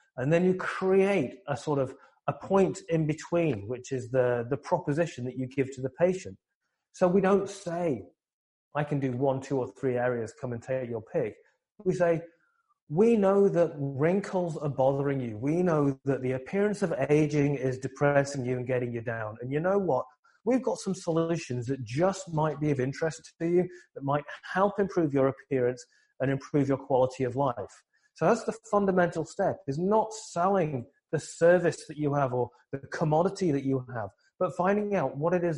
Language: English